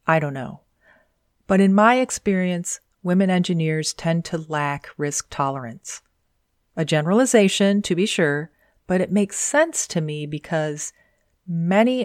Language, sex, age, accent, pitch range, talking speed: English, female, 40-59, American, 150-195 Hz, 135 wpm